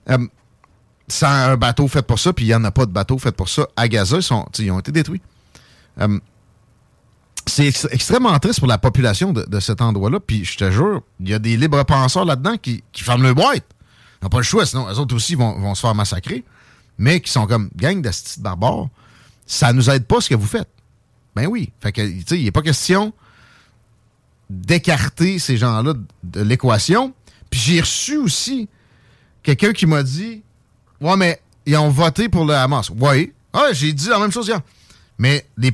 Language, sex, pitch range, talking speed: French, male, 115-155 Hz, 210 wpm